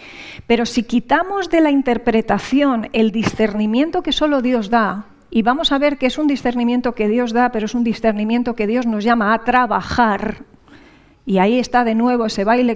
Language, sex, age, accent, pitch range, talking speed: English, female, 40-59, Spanish, 215-255 Hz, 190 wpm